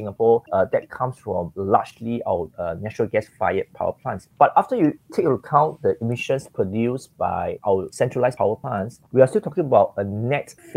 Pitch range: 105-145 Hz